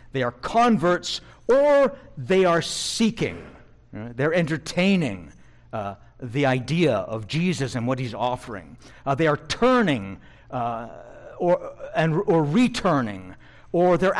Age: 60-79